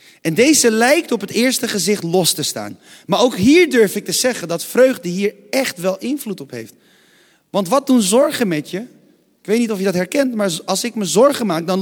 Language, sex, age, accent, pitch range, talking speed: Dutch, male, 30-49, Dutch, 145-230 Hz, 230 wpm